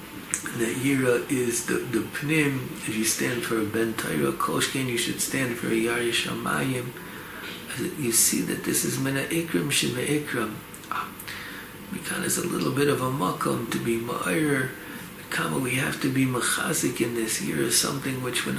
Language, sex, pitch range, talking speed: English, male, 110-145 Hz, 160 wpm